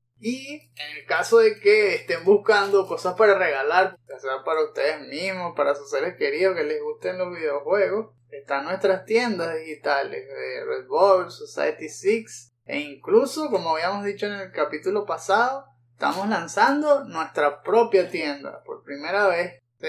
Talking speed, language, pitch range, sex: 155 wpm, Spanish, 160-240 Hz, male